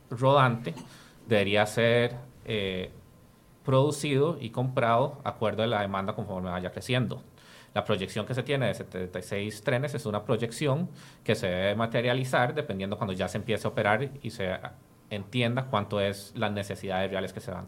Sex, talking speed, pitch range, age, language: male, 160 wpm, 105-130 Hz, 30-49, Spanish